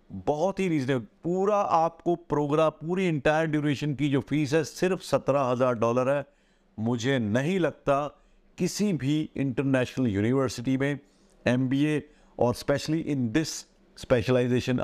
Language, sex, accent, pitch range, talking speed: Hindi, male, native, 115-150 Hz, 130 wpm